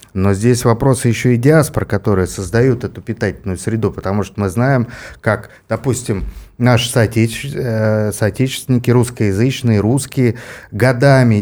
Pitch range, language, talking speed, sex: 100-125 Hz, Russian, 115 wpm, male